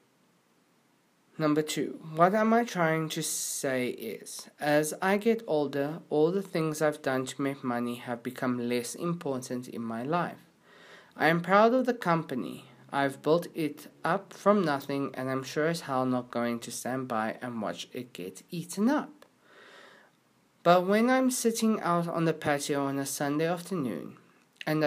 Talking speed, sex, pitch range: 165 wpm, male, 135-170 Hz